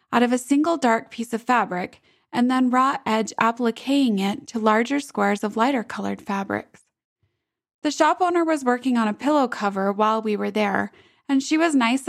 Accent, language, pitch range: American, English, 220-285 Hz